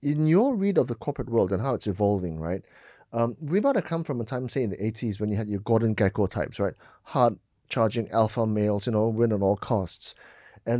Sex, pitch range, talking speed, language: male, 110-140 Hz, 240 wpm, English